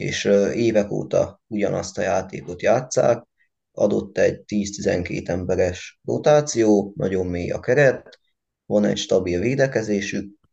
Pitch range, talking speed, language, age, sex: 95-110 Hz, 115 wpm, Hungarian, 20-39, male